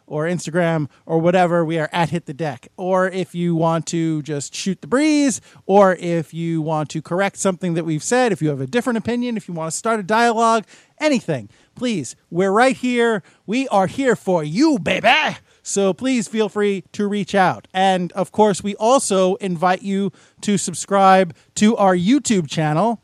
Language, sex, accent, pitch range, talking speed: English, male, American, 170-215 Hz, 190 wpm